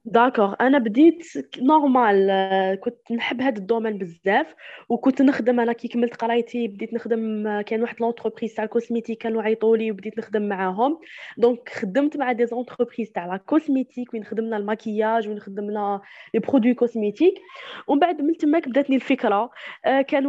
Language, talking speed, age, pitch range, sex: Arabic, 150 wpm, 20-39, 230-275 Hz, female